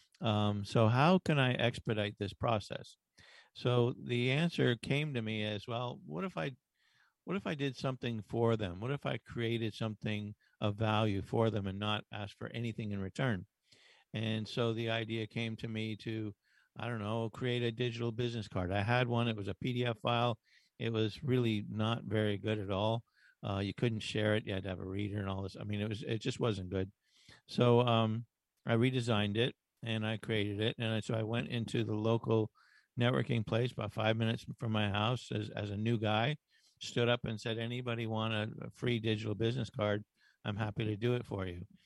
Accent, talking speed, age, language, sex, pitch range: American, 205 wpm, 50-69, English, male, 105-120 Hz